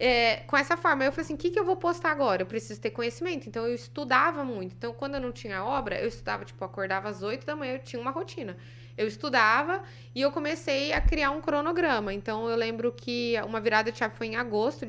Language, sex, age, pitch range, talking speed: Portuguese, female, 20-39, 225-295 Hz, 240 wpm